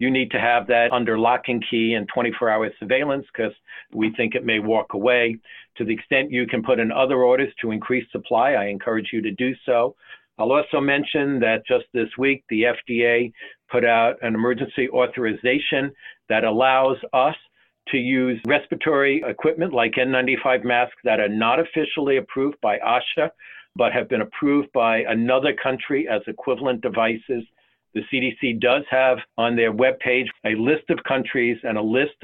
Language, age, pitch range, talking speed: English, 50-69, 115-130 Hz, 170 wpm